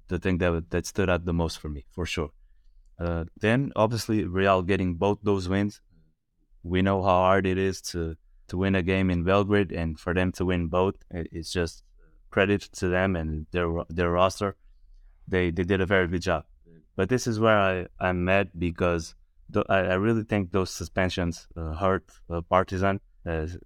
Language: English